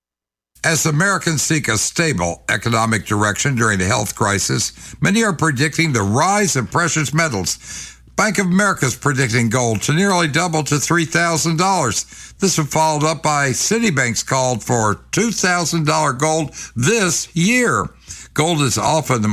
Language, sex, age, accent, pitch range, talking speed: English, male, 60-79, American, 105-155 Hz, 145 wpm